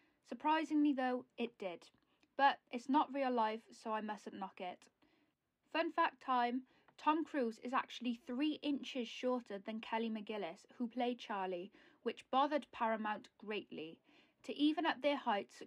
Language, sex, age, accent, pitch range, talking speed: English, female, 10-29, British, 220-270 Hz, 150 wpm